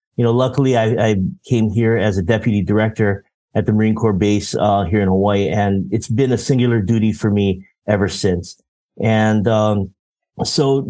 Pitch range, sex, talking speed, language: 100-120 Hz, male, 180 wpm, English